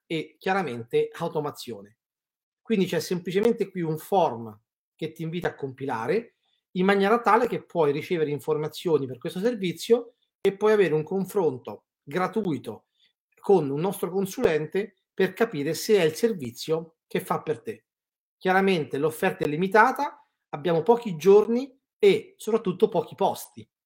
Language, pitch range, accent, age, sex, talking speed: Italian, 155-205 Hz, native, 40-59, male, 140 wpm